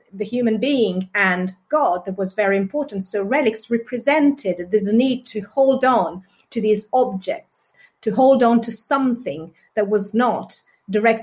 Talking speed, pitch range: 155 wpm, 190-235 Hz